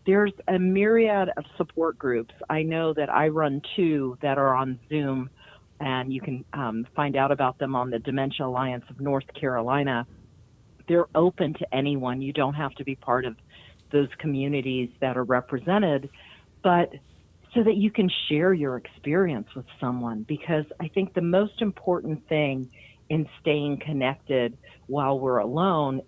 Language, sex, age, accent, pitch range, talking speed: English, female, 40-59, American, 130-170 Hz, 160 wpm